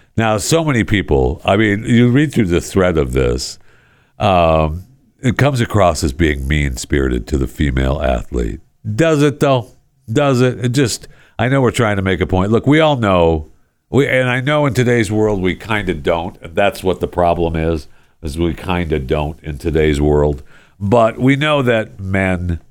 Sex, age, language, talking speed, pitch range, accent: male, 50-69, English, 190 wpm, 80-120 Hz, American